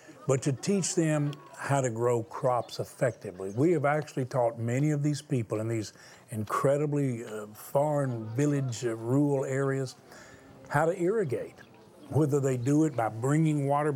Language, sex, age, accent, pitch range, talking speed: English, male, 50-69, American, 135-170 Hz, 155 wpm